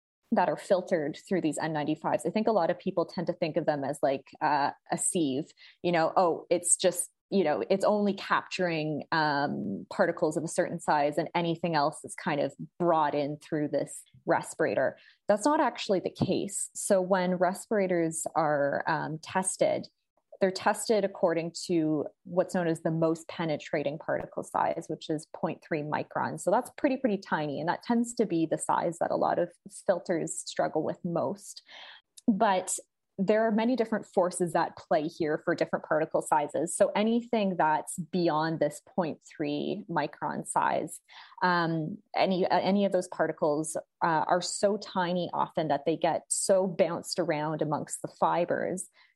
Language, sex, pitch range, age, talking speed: English, female, 160-195 Hz, 20-39, 165 wpm